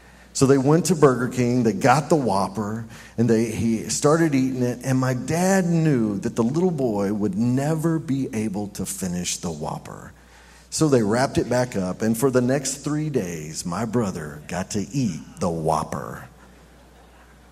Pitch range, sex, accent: 95-145 Hz, male, American